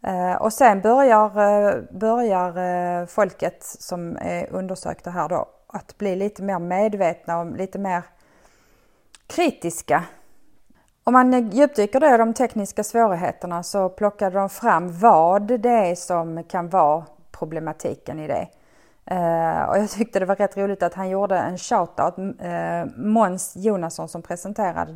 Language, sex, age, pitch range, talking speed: Swedish, female, 30-49, 175-225 Hz, 130 wpm